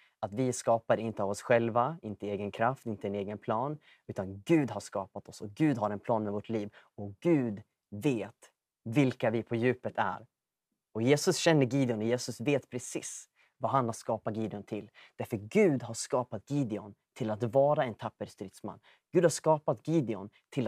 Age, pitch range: 30-49, 110-145 Hz